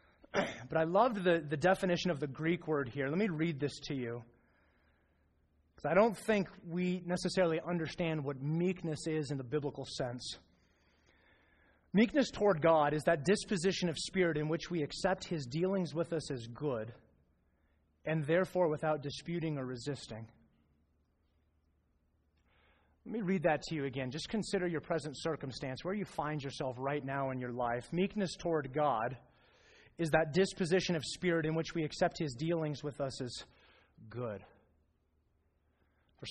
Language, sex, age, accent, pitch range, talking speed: English, male, 30-49, American, 125-180 Hz, 155 wpm